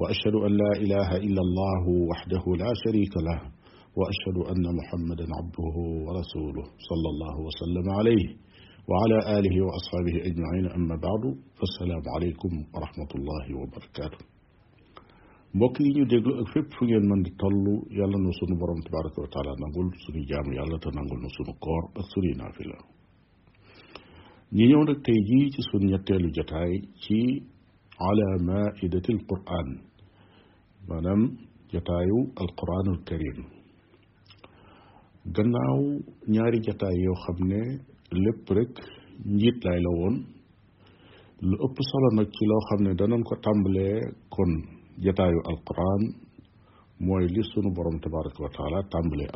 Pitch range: 85-105 Hz